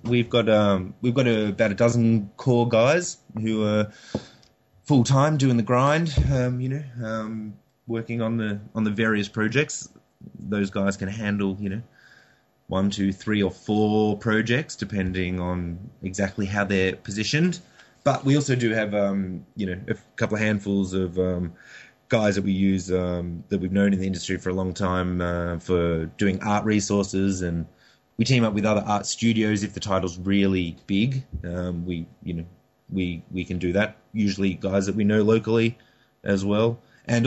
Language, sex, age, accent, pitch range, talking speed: English, male, 20-39, Australian, 95-115 Hz, 180 wpm